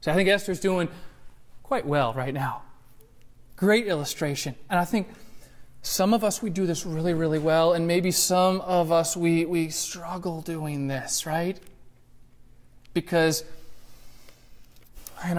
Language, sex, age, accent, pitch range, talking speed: English, male, 30-49, American, 130-170 Hz, 140 wpm